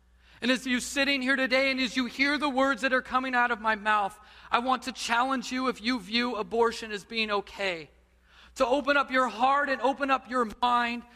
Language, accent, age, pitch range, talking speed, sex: English, American, 30-49, 155-250 Hz, 220 wpm, male